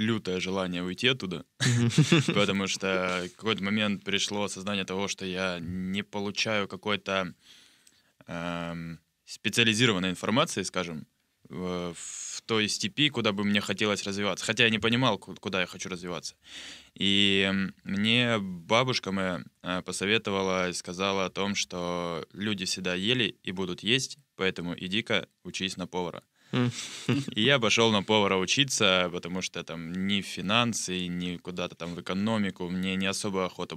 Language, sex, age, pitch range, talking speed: Russian, male, 20-39, 90-110 Hz, 135 wpm